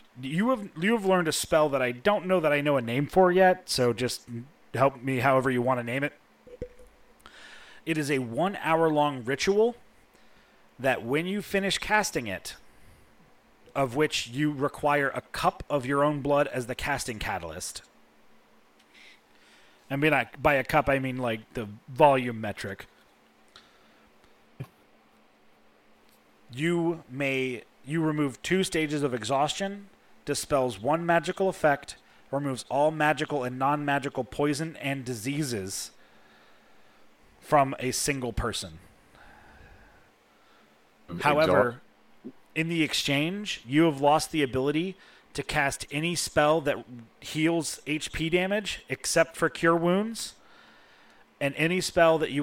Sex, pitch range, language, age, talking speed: male, 125-165 Hz, English, 30-49, 130 wpm